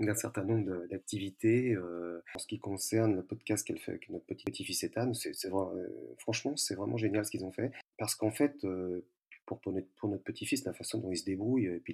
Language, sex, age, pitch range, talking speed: French, male, 40-59, 95-115 Hz, 235 wpm